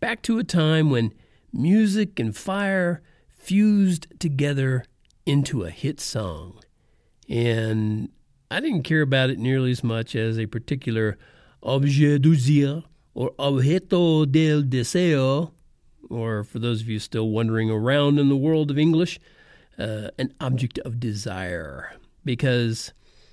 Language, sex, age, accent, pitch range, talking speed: English, male, 50-69, American, 115-155 Hz, 130 wpm